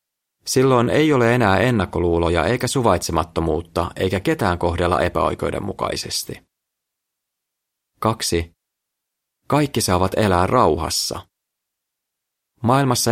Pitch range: 85-120 Hz